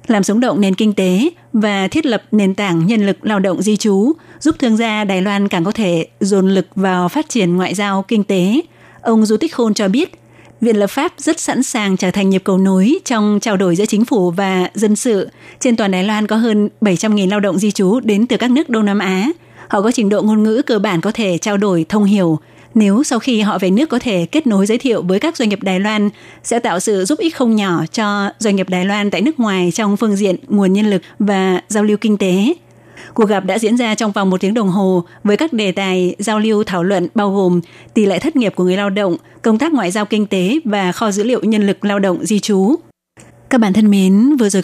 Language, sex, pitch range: Vietnamese, female, 190-220 Hz